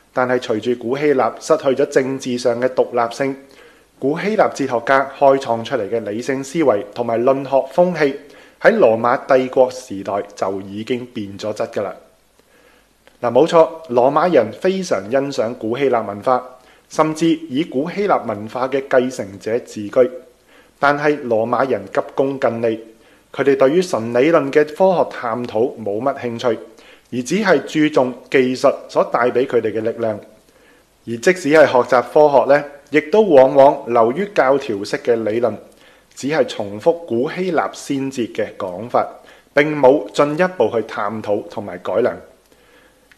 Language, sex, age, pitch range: Chinese, male, 20-39, 115-150 Hz